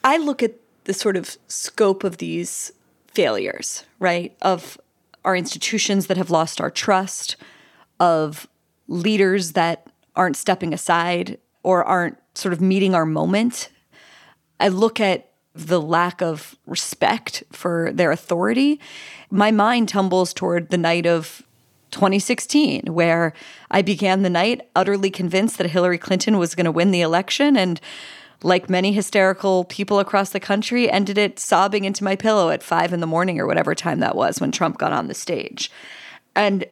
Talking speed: 160 wpm